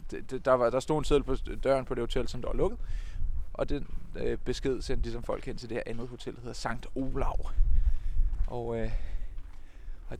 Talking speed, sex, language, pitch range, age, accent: 210 wpm, male, Danish, 85-130 Hz, 20-39, native